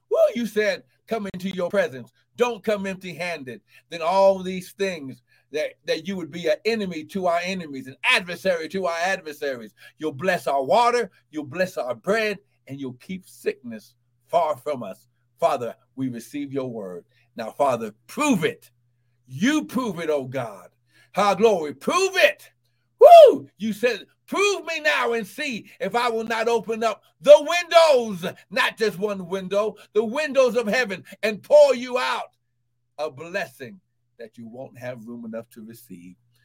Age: 60-79